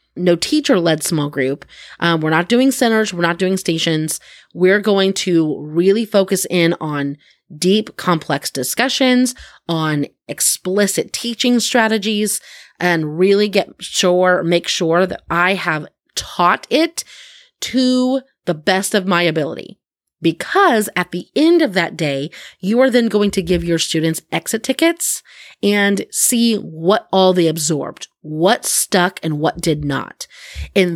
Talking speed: 145 wpm